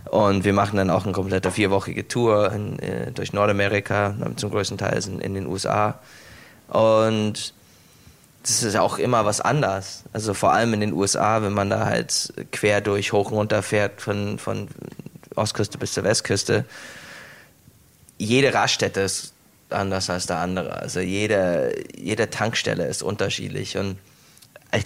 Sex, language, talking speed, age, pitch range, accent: male, German, 155 wpm, 20-39, 95-110 Hz, German